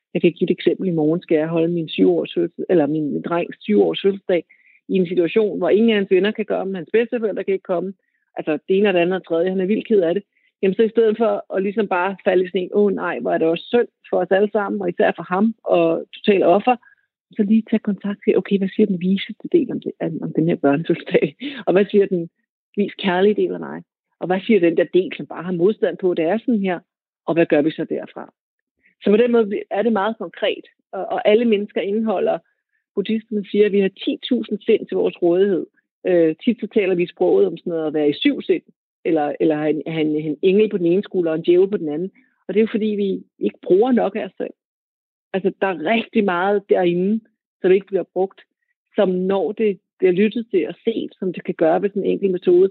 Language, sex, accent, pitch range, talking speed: Danish, female, native, 180-220 Hz, 250 wpm